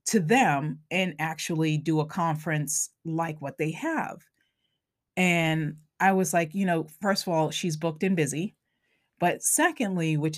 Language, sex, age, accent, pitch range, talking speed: English, female, 30-49, American, 155-195 Hz, 155 wpm